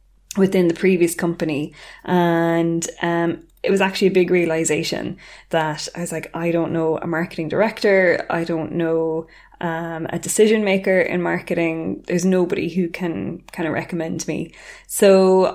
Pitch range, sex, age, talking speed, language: 165-185 Hz, female, 20-39, 155 wpm, English